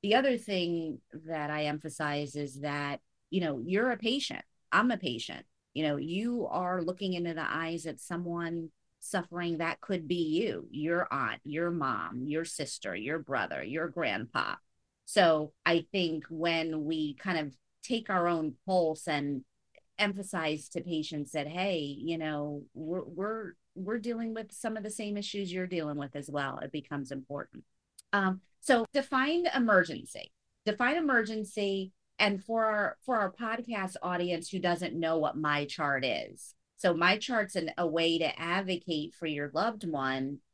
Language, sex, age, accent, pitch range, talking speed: English, female, 30-49, American, 150-190 Hz, 160 wpm